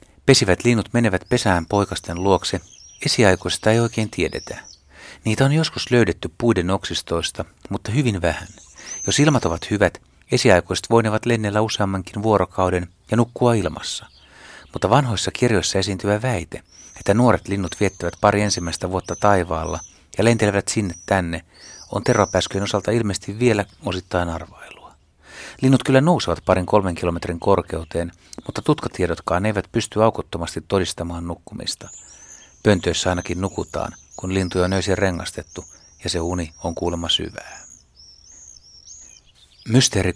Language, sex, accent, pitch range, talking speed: Finnish, male, native, 85-115 Hz, 125 wpm